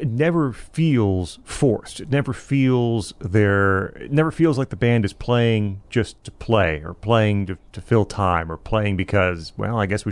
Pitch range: 100-130 Hz